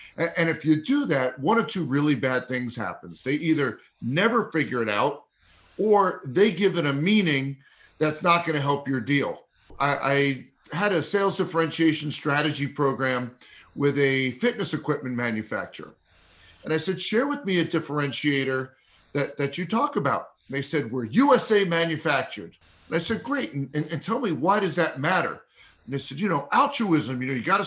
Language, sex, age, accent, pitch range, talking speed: English, male, 40-59, American, 140-195 Hz, 185 wpm